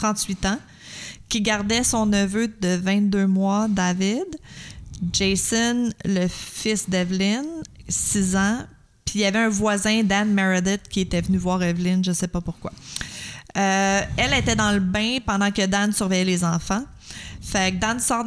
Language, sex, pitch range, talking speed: French, female, 180-210 Hz, 160 wpm